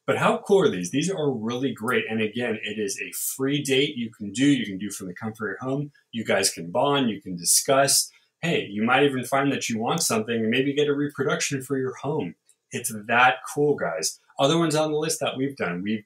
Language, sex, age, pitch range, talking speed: English, male, 30-49, 105-150 Hz, 245 wpm